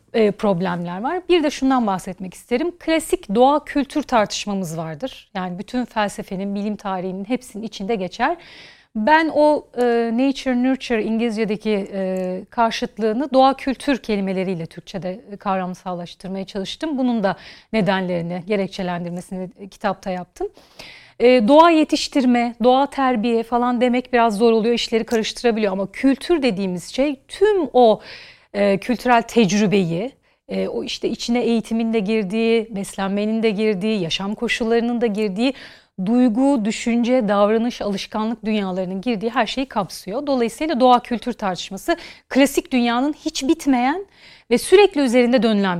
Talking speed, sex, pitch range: 125 wpm, female, 200-265 Hz